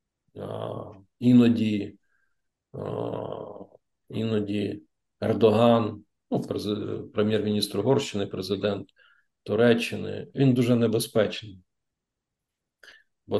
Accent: native